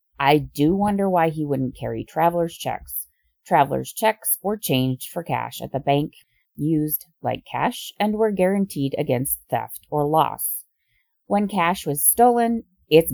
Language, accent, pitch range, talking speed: English, American, 130-185 Hz, 150 wpm